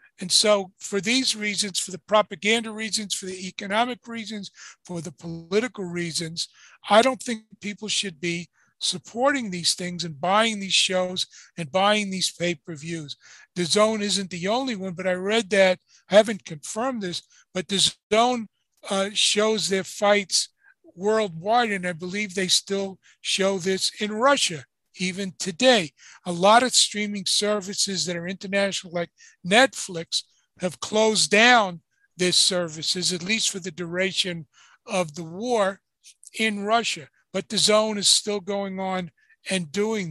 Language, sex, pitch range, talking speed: English, male, 180-215 Hz, 150 wpm